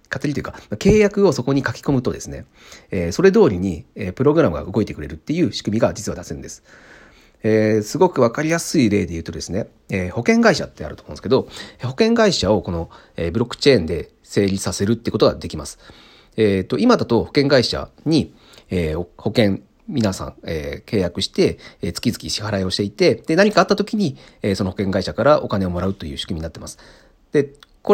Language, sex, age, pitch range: Japanese, male, 40-59, 90-140 Hz